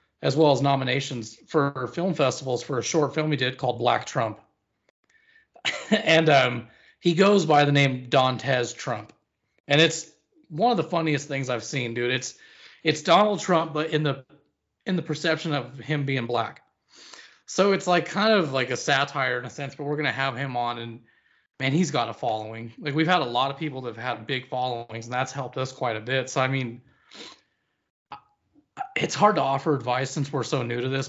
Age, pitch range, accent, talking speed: 30-49, 125-160 Hz, American, 205 wpm